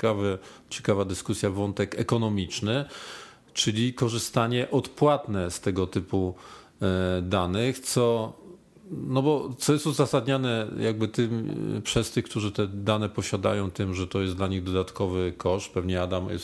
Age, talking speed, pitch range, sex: 40-59, 135 wpm, 100-130 Hz, male